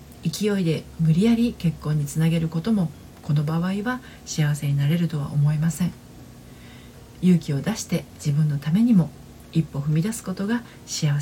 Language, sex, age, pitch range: Japanese, female, 40-59, 155-210 Hz